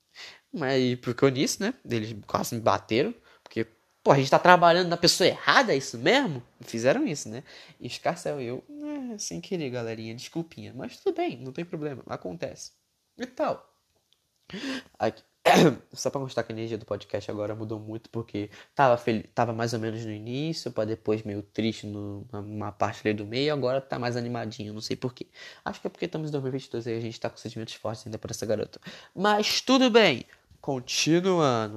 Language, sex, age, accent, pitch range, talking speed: Portuguese, male, 10-29, Brazilian, 115-155 Hz, 190 wpm